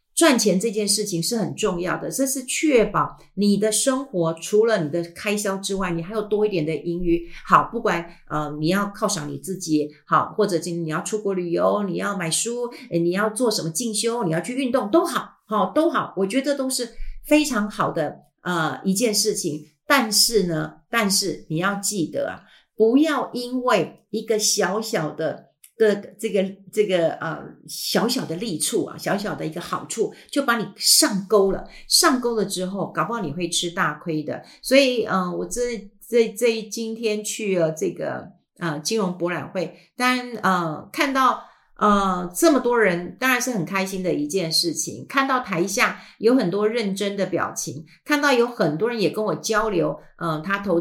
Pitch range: 170-230 Hz